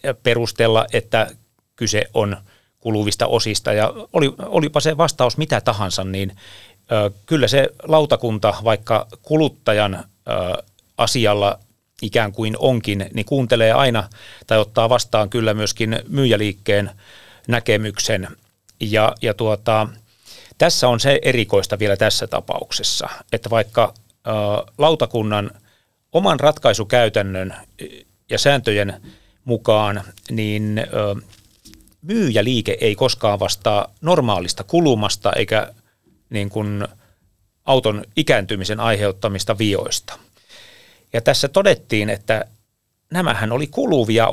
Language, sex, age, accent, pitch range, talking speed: Finnish, male, 30-49, native, 105-120 Hz, 95 wpm